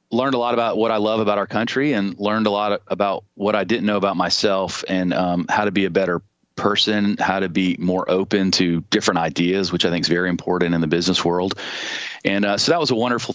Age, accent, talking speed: 40-59, American, 245 wpm